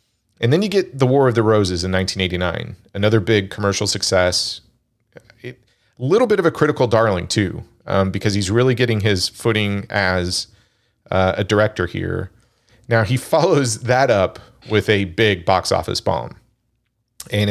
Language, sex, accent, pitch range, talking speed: English, male, American, 95-115 Hz, 160 wpm